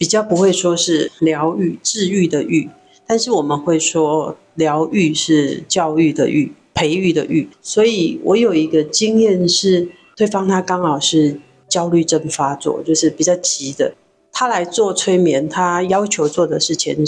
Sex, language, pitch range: female, Chinese, 155-185 Hz